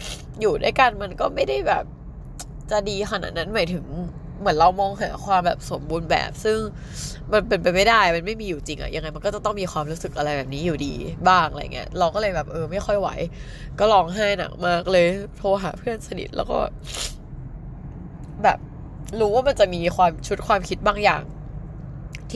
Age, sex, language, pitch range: 20-39, female, Thai, 150-205 Hz